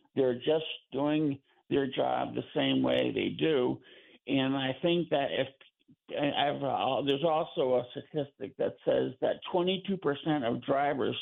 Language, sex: English, male